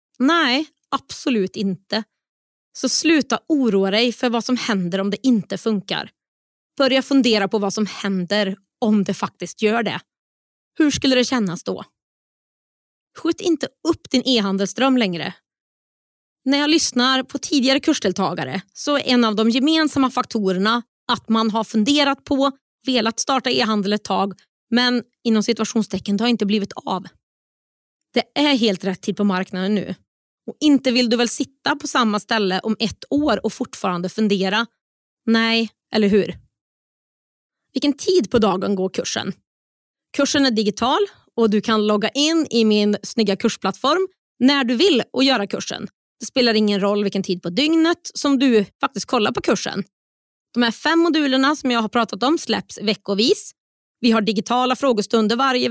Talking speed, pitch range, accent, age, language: 160 wpm, 210-275 Hz, native, 20-39, Swedish